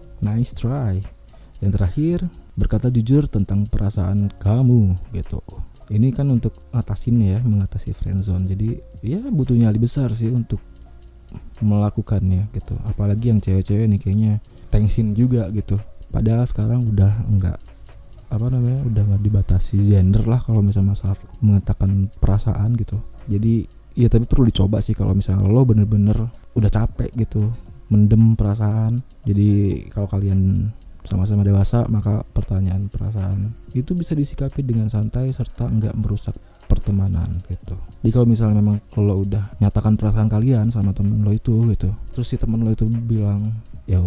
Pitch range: 100-115 Hz